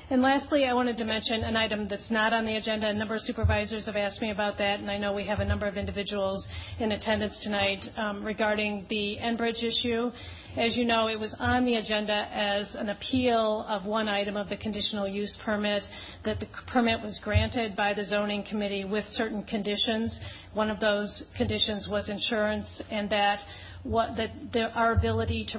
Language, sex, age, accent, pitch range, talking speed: English, female, 40-59, American, 200-220 Hz, 190 wpm